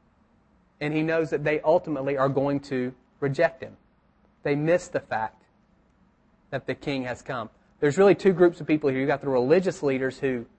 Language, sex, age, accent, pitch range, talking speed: English, male, 30-49, American, 130-155 Hz, 185 wpm